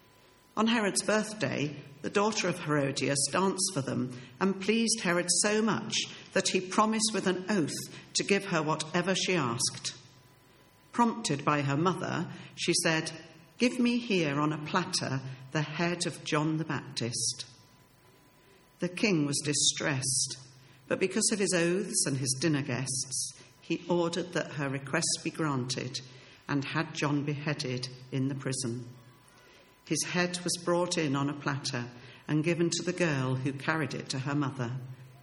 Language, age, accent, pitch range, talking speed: English, 50-69, British, 130-175 Hz, 155 wpm